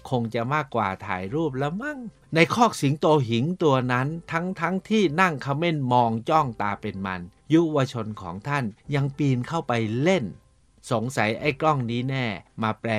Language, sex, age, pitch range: Thai, male, 60-79, 110-145 Hz